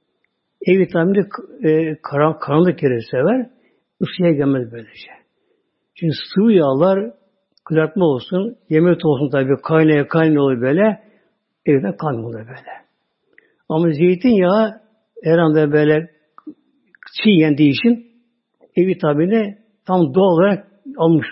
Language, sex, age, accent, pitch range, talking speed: Turkish, male, 60-79, native, 150-210 Hz, 110 wpm